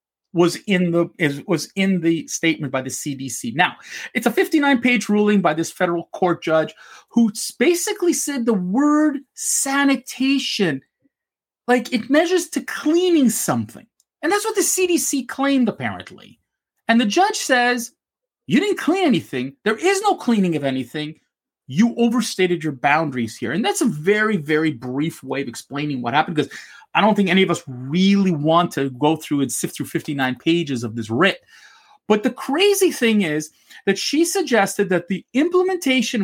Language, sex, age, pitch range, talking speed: English, male, 30-49, 170-275 Hz, 165 wpm